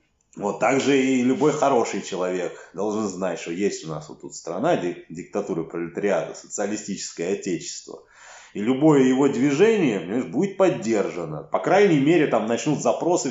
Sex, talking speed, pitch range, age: male, 140 wpm, 95-155 Hz, 30-49